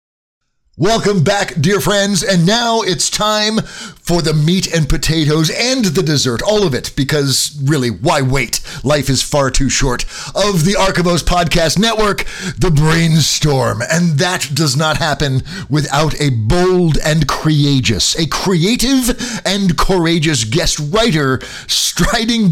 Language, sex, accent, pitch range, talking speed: English, male, American, 145-190 Hz, 140 wpm